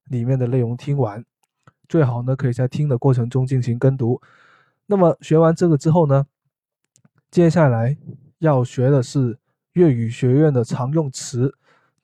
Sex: male